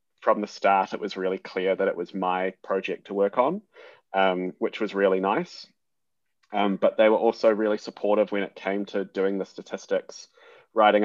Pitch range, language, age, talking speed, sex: 95-110 Hz, English, 20-39, 190 wpm, male